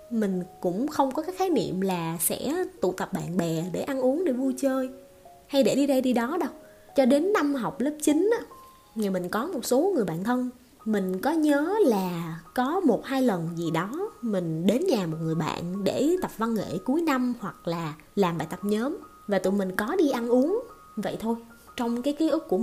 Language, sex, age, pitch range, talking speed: Vietnamese, female, 20-39, 180-275 Hz, 215 wpm